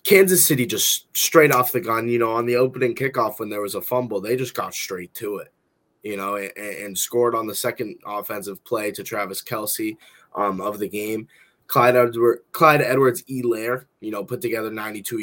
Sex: male